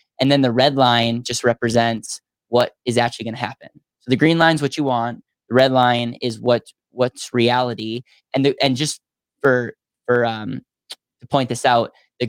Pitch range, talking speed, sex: 115-130 Hz, 190 wpm, male